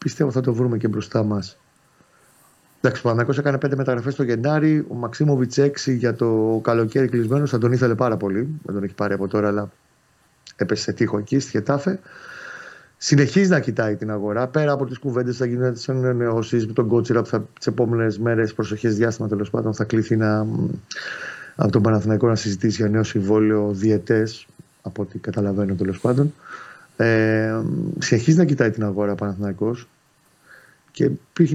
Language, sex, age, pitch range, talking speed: Greek, male, 30-49, 110-135 Hz, 160 wpm